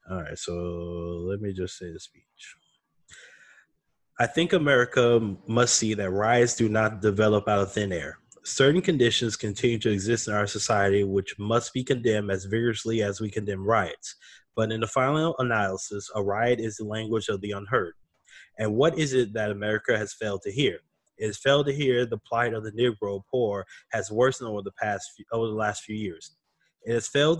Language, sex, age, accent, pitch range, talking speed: English, male, 20-39, American, 105-125 Hz, 195 wpm